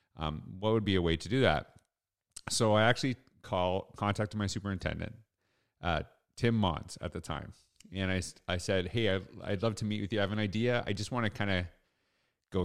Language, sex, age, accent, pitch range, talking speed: English, male, 40-59, American, 90-110 Hz, 215 wpm